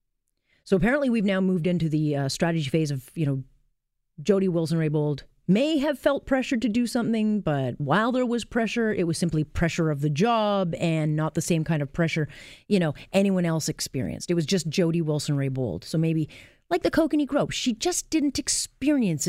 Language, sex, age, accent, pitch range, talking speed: English, female, 30-49, American, 150-205 Hz, 190 wpm